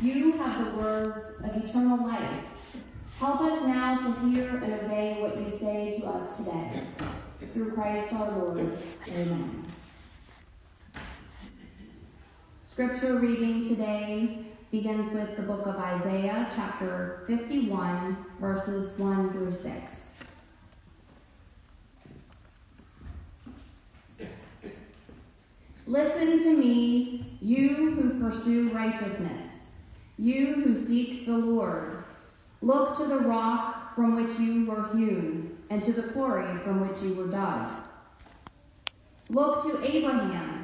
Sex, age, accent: female, 30-49, American